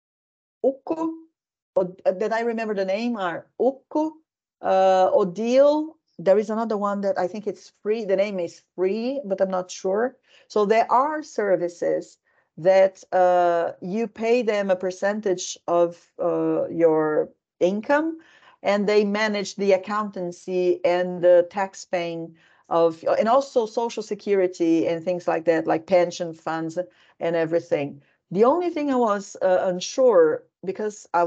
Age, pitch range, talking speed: 50-69, 180-225 Hz, 140 wpm